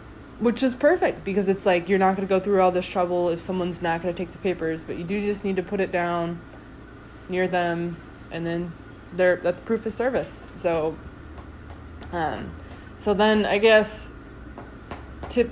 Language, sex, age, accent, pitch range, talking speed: English, female, 20-39, American, 165-205 Hz, 185 wpm